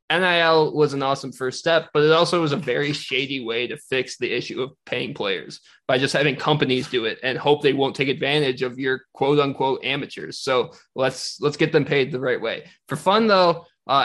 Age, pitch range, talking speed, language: 20-39, 130-170 Hz, 220 wpm, English